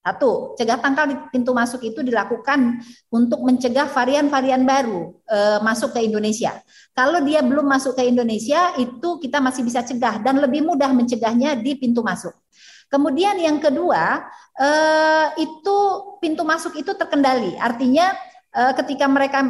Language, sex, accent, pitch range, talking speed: Indonesian, female, native, 235-290 Hz, 140 wpm